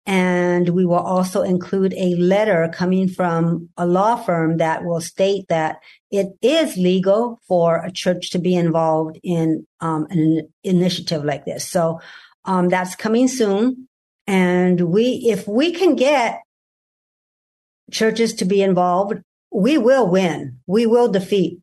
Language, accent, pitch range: English, American, 175-210 Hz